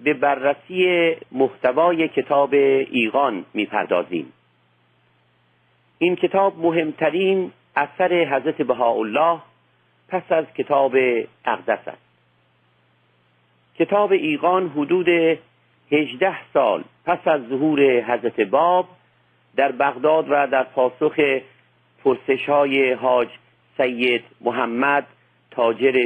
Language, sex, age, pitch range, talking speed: Persian, male, 50-69, 120-165 Hz, 85 wpm